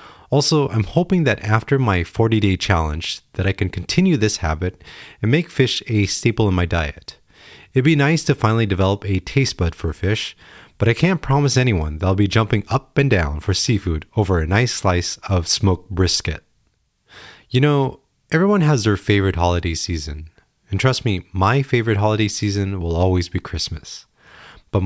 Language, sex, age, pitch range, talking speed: English, male, 30-49, 90-125 Hz, 180 wpm